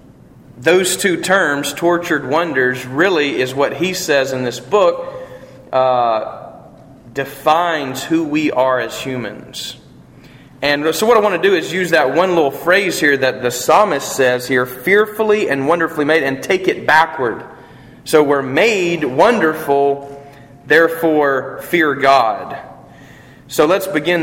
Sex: male